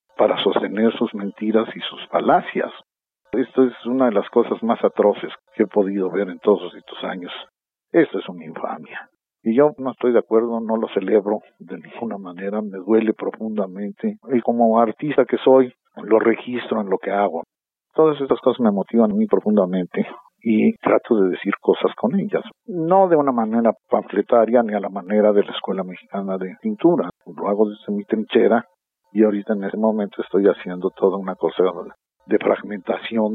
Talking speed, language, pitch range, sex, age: 180 wpm, Spanish, 105-125 Hz, male, 50-69